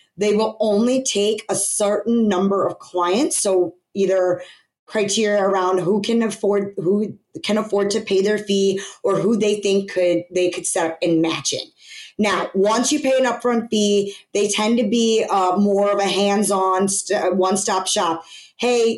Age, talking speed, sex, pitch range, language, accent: 20-39, 175 wpm, female, 185-220 Hz, English, American